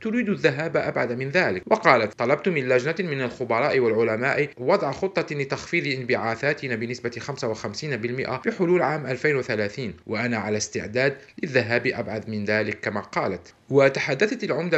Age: 40-59